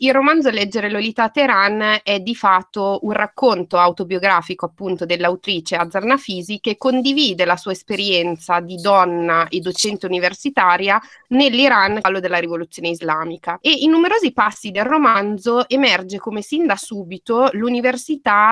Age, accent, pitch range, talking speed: 20-39, native, 180-220 Hz, 135 wpm